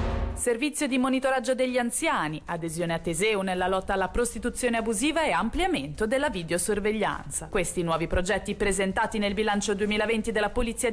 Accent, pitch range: native, 135-215 Hz